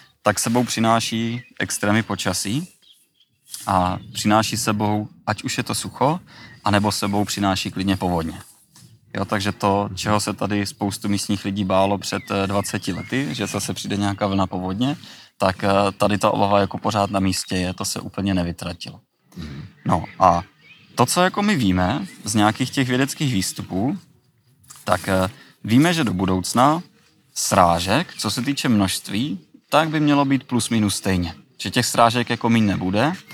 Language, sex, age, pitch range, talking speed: Czech, male, 20-39, 95-120 Hz, 155 wpm